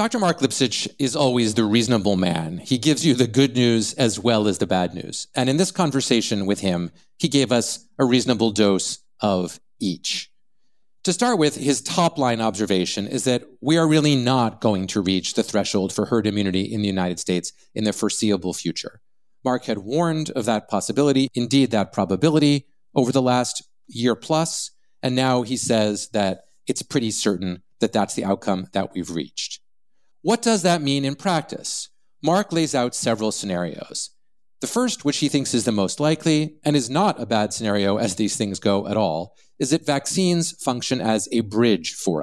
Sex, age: male, 40-59